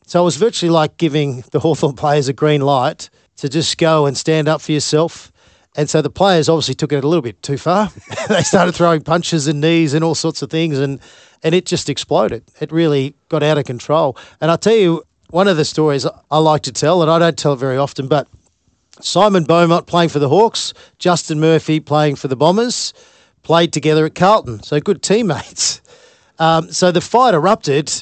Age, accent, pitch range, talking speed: 40-59, Australian, 150-180 Hz, 210 wpm